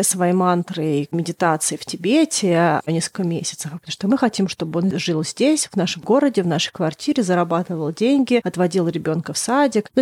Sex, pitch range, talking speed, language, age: female, 175-210 Hz, 175 wpm, Russian, 30-49